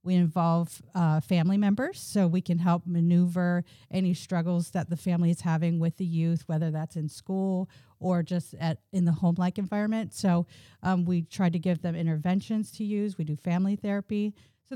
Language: English